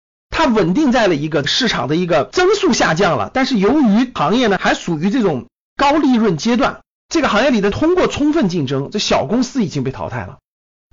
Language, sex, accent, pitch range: Chinese, male, native, 165-255 Hz